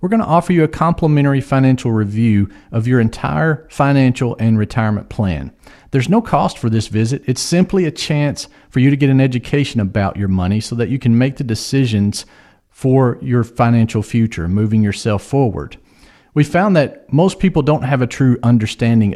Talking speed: 185 wpm